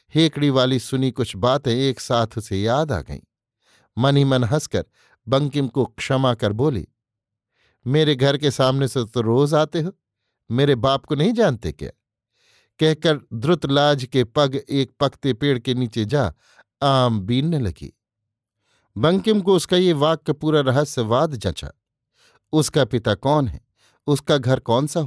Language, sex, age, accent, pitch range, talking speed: Hindi, male, 50-69, native, 115-145 Hz, 155 wpm